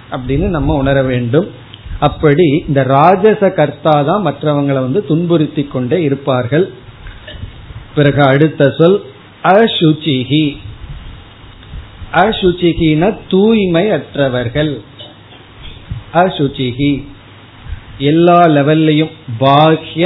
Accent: native